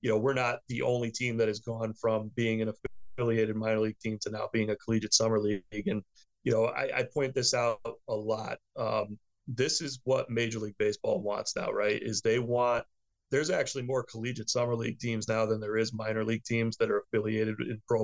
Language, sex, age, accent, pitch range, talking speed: English, male, 30-49, American, 110-125 Hz, 220 wpm